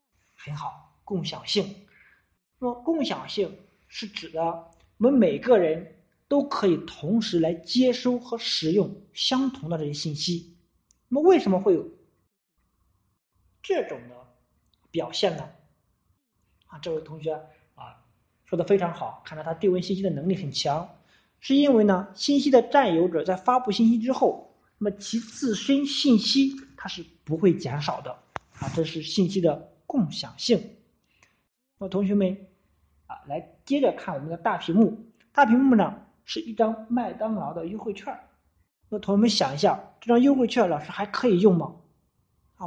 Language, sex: Chinese, male